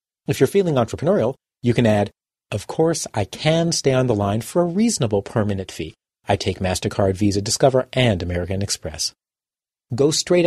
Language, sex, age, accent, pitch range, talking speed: English, male, 40-59, American, 110-155 Hz, 170 wpm